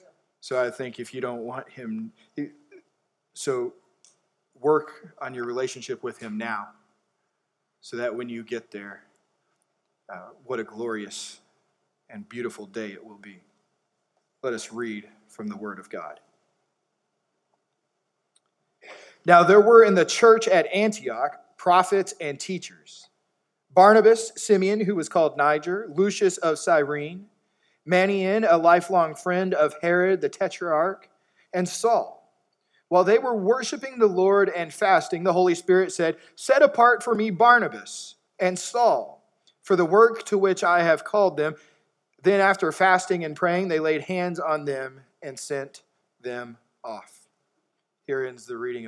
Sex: male